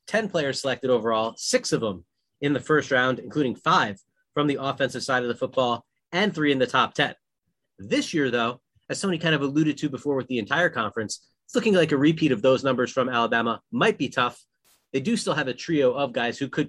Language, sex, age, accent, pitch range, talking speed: English, male, 30-49, American, 125-160 Hz, 225 wpm